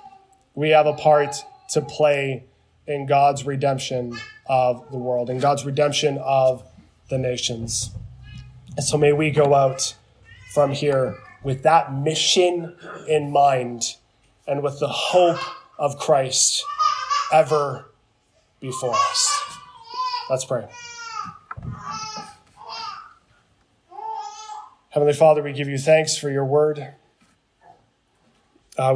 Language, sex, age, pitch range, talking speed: English, male, 20-39, 130-165 Hz, 105 wpm